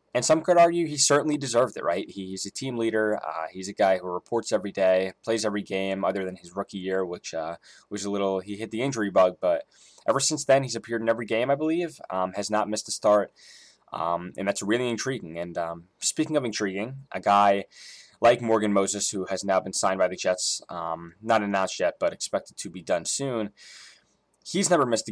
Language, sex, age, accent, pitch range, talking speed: English, male, 10-29, American, 95-115 Hz, 220 wpm